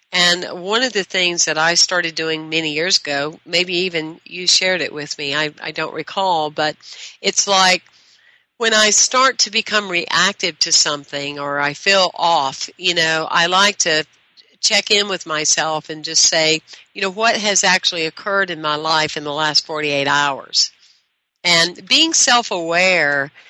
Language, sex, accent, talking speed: English, female, American, 170 wpm